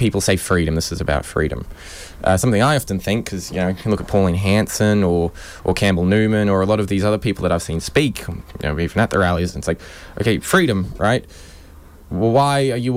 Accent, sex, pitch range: Australian, male, 90-110 Hz